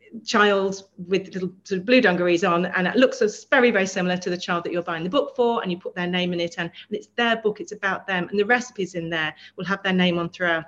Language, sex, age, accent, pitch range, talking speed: English, female, 30-49, British, 170-205 Hz, 275 wpm